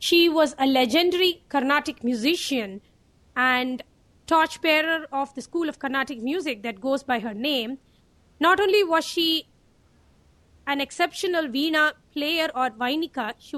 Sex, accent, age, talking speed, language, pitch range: female, Indian, 30-49, 135 wpm, English, 260-320 Hz